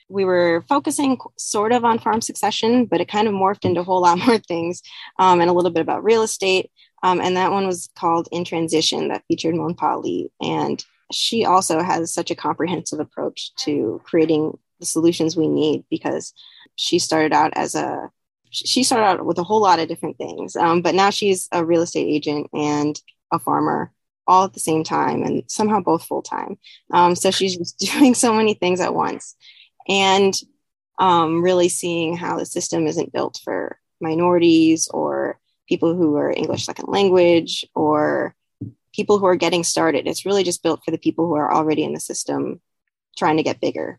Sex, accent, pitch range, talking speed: female, American, 160-190 Hz, 190 wpm